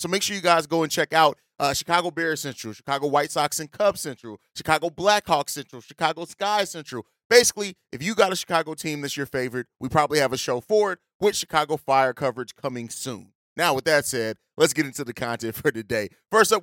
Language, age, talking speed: English, 30-49, 220 wpm